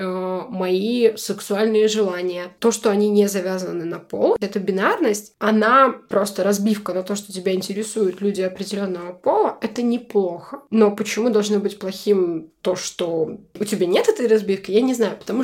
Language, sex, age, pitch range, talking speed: Russian, female, 20-39, 205-245 Hz, 160 wpm